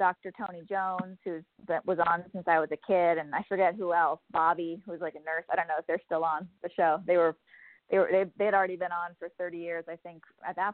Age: 30-49